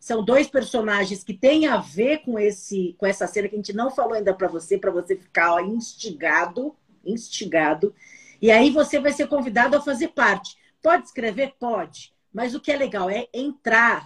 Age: 50-69